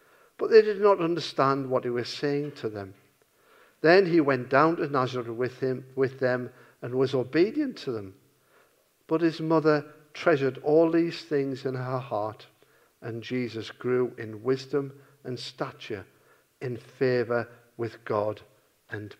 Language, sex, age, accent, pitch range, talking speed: English, male, 50-69, British, 130-165 Hz, 150 wpm